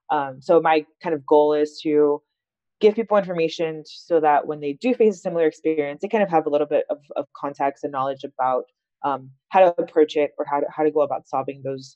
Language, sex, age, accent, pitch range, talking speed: English, female, 20-39, American, 145-180 Hz, 235 wpm